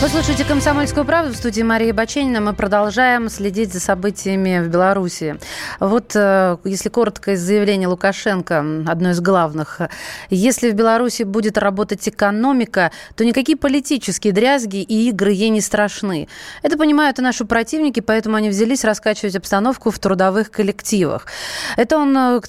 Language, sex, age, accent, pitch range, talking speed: Russian, female, 20-39, native, 195-240 Hz, 145 wpm